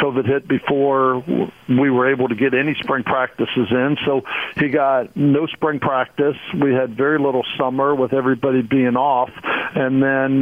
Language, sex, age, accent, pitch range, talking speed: English, male, 50-69, American, 125-140 Hz, 165 wpm